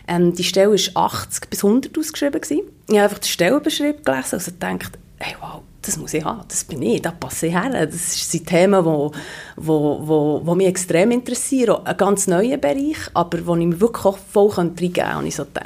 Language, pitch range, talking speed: German, 175-220 Hz, 215 wpm